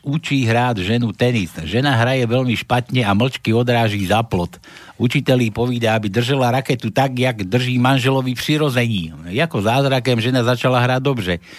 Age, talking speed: 60-79, 150 wpm